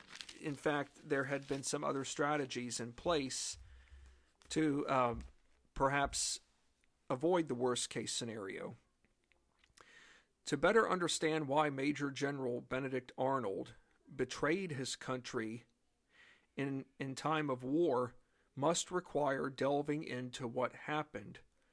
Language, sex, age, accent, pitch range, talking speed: English, male, 50-69, American, 130-155 Hz, 110 wpm